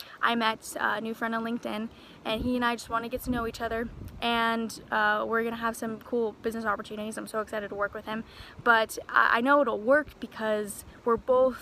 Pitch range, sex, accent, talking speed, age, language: 220-250 Hz, female, American, 220 wpm, 10-29, English